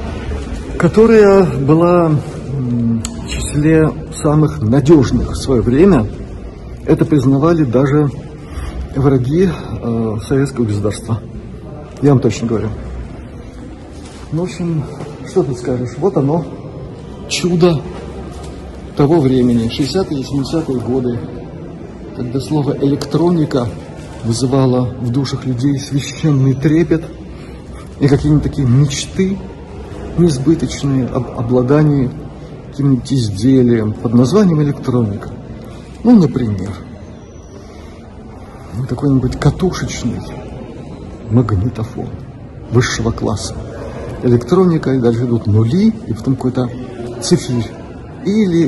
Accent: native